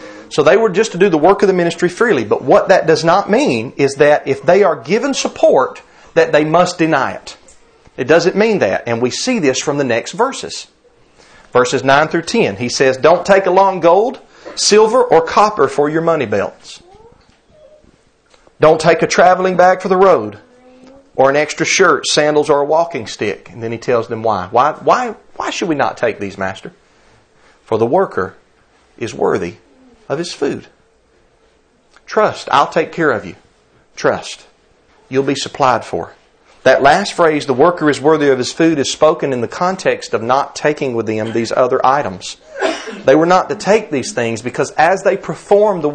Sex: male